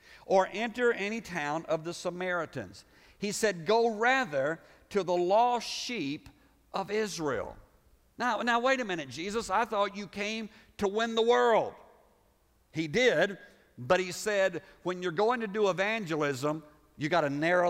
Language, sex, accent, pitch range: English, male, American, 155-205 Hz